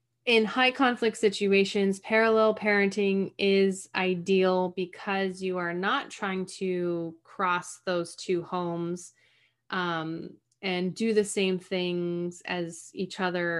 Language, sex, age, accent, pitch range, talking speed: English, female, 20-39, American, 175-210 Hz, 120 wpm